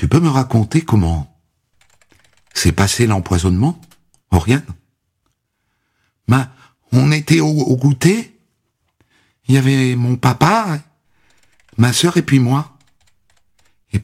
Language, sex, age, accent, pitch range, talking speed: French, male, 60-79, French, 85-135 Hz, 110 wpm